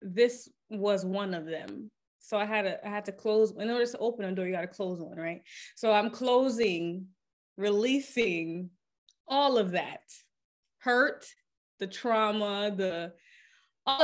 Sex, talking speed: female, 160 wpm